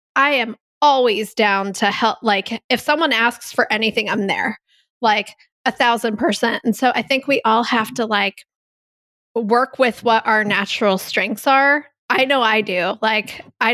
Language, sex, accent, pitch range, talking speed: English, female, American, 205-245 Hz, 175 wpm